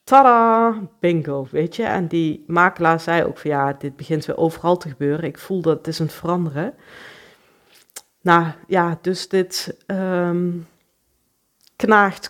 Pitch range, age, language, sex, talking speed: 165-205 Hz, 40-59, Dutch, female, 140 wpm